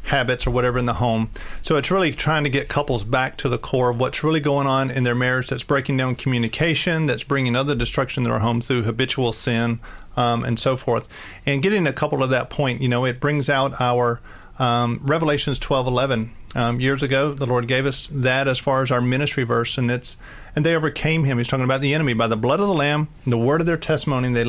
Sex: male